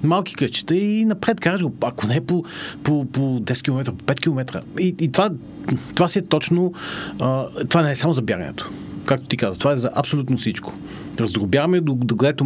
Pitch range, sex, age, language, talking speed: 110-150 Hz, male, 40-59, Bulgarian, 200 wpm